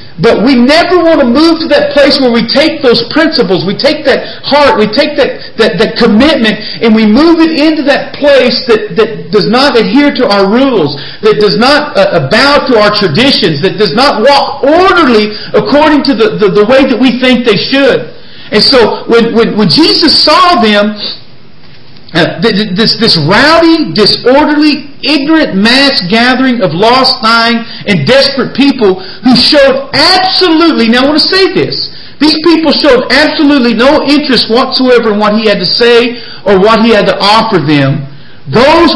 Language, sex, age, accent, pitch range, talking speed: English, male, 40-59, American, 215-285 Hz, 180 wpm